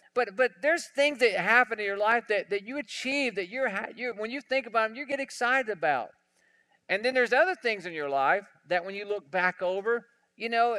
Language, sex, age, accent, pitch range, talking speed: English, male, 50-69, American, 185-235 Hz, 230 wpm